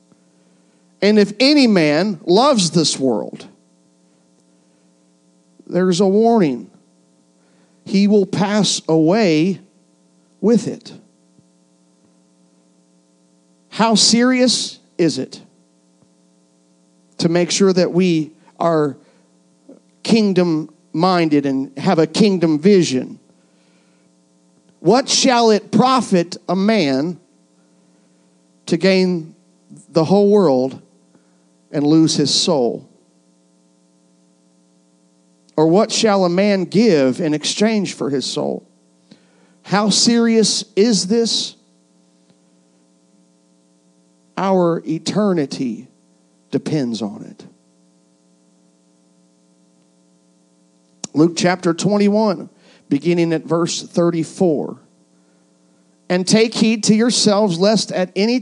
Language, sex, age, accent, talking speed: English, male, 50-69, American, 85 wpm